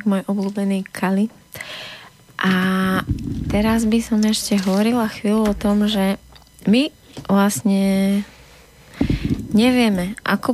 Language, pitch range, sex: Slovak, 180-200 Hz, female